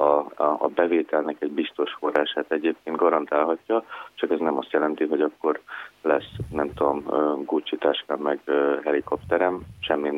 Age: 30-49